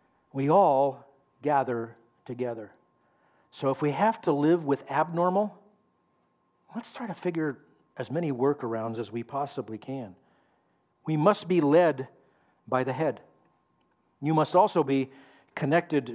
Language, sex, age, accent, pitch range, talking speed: English, male, 50-69, American, 135-175 Hz, 130 wpm